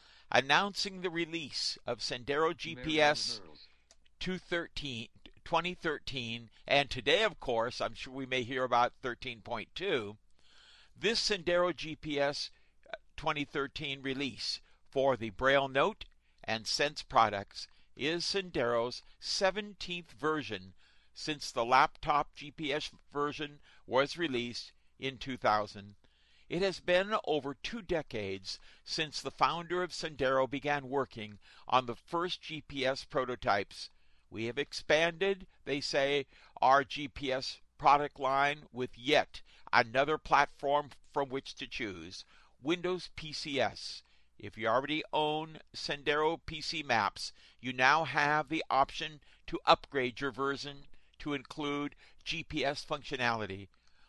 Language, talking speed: English, 110 wpm